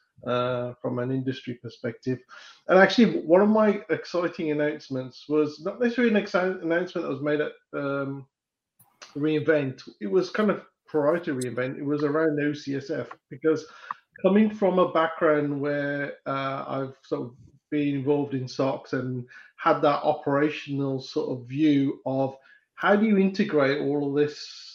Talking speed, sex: 155 wpm, male